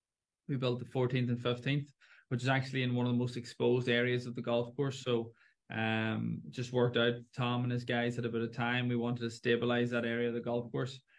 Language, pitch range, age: English, 120-130 Hz, 20-39